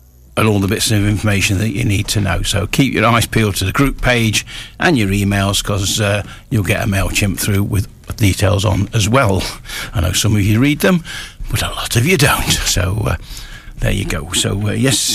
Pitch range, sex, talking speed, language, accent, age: 100-120 Hz, male, 220 wpm, English, British, 50-69